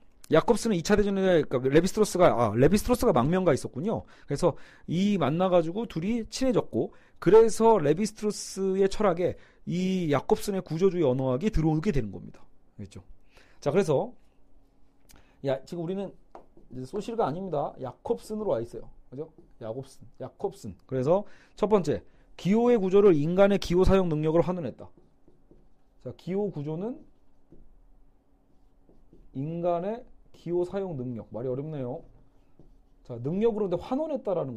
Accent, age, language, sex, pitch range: native, 40-59, Korean, male, 135-205 Hz